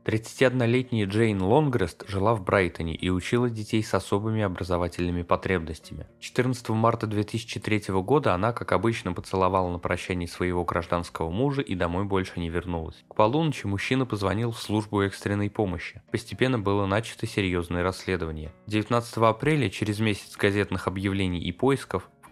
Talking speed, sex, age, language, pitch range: 145 wpm, male, 20-39, Russian, 95-115 Hz